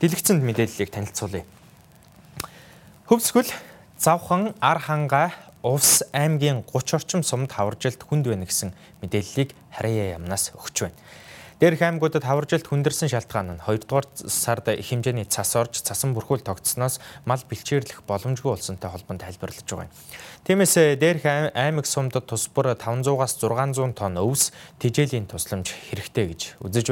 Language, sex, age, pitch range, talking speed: English, male, 20-39, 100-140 Hz, 125 wpm